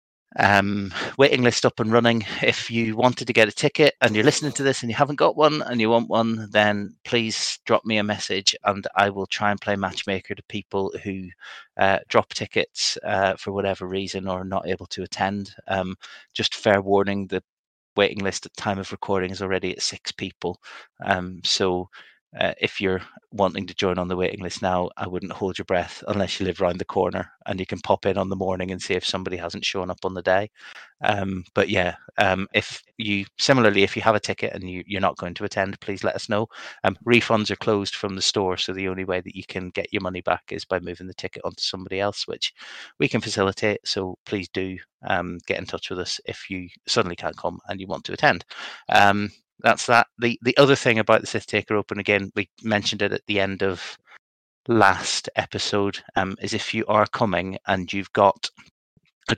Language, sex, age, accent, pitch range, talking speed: English, male, 30-49, British, 95-110 Hz, 220 wpm